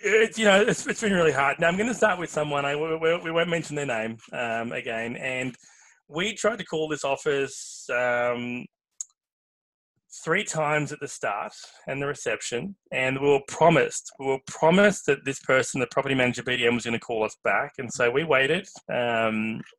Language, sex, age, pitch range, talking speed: English, male, 20-39, 125-170 Hz, 190 wpm